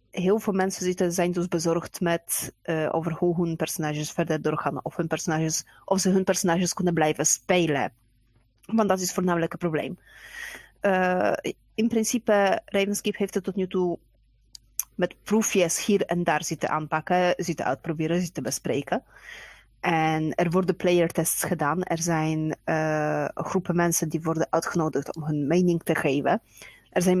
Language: Dutch